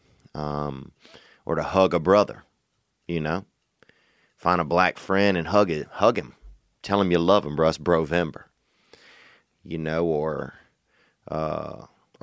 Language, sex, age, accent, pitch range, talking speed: English, male, 30-49, American, 80-100 Hz, 140 wpm